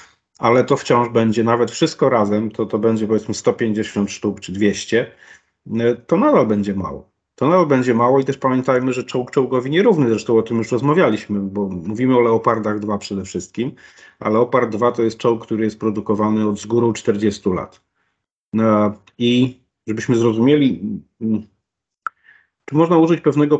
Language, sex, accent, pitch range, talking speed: Polish, male, native, 100-120 Hz, 160 wpm